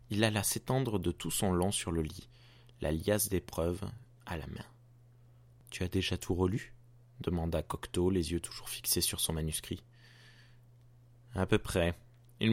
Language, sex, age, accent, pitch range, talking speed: French, male, 20-39, French, 95-120 Hz, 165 wpm